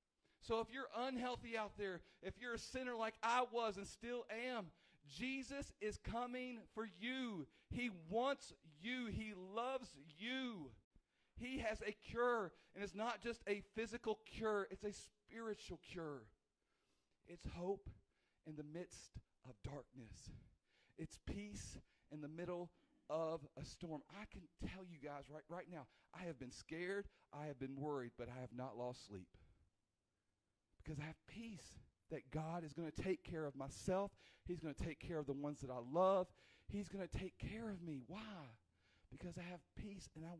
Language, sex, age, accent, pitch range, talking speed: English, male, 40-59, American, 125-205 Hz, 175 wpm